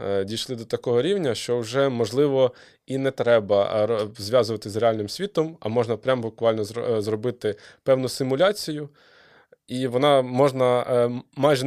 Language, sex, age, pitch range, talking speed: Ukrainian, male, 20-39, 105-125 Hz, 130 wpm